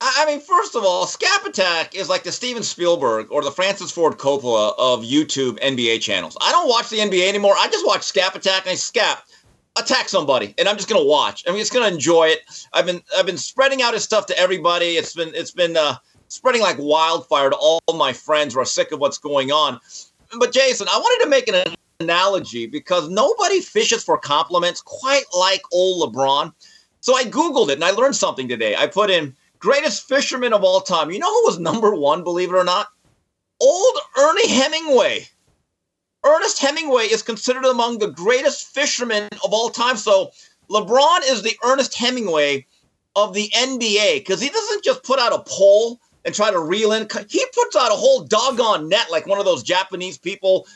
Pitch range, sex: 175-280 Hz, male